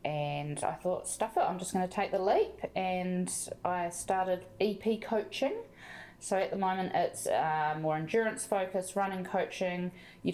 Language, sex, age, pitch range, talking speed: English, female, 20-39, 155-190 Hz, 170 wpm